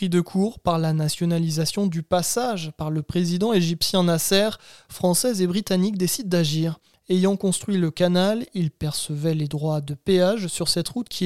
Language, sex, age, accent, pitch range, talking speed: French, male, 20-39, French, 160-185 Hz, 165 wpm